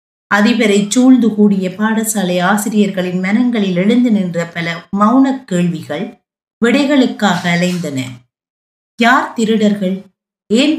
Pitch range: 190-240 Hz